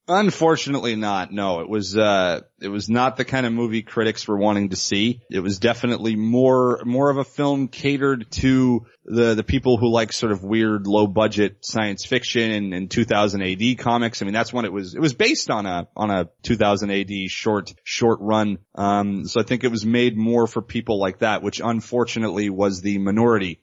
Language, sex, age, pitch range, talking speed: English, male, 30-49, 100-120 Hz, 205 wpm